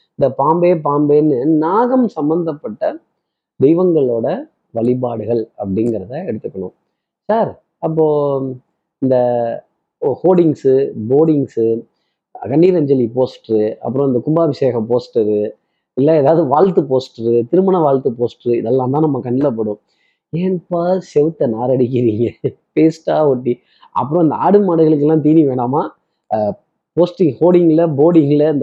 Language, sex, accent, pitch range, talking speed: Tamil, male, native, 125-160 Hz, 100 wpm